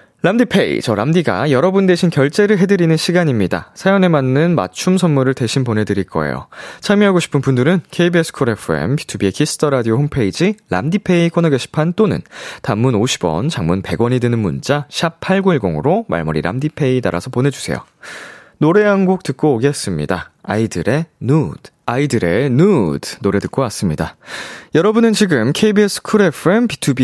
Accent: native